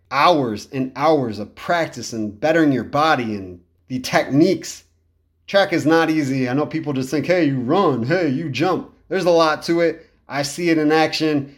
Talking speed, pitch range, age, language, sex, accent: 190 wpm, 140-175 Hz, 30-49, English, male, American